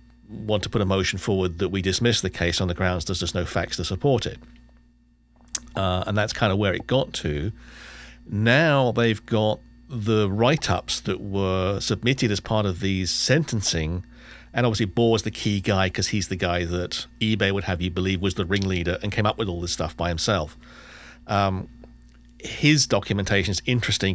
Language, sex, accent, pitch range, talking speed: English, male, British, 90-110 Hz, 190 wpm